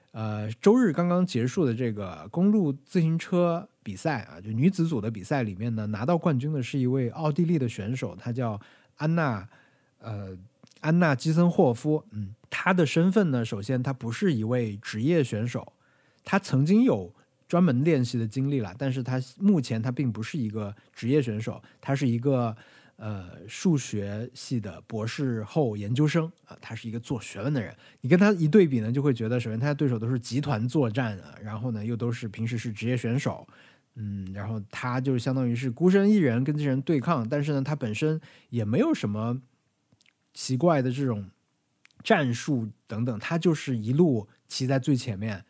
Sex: male